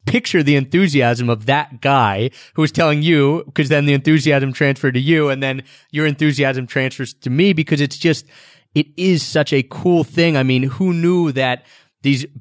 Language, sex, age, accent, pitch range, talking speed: English, male, 30-49, American, 125-155 Hz, 190 wpm